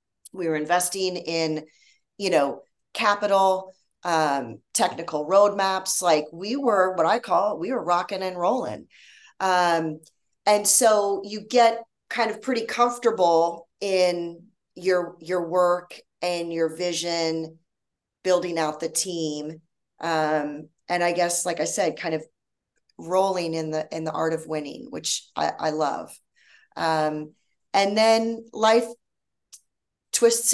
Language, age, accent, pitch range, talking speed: English, 30-49, American, 160-190 Hz, 130 wpm